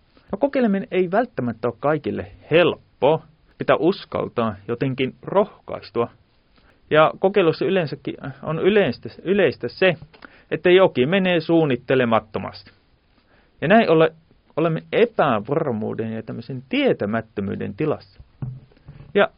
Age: 30-49